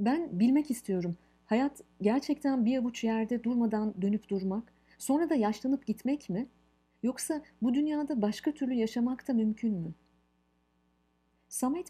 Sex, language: female, Turkish